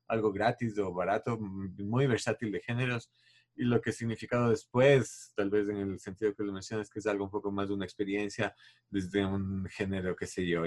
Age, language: 30-49, Spanish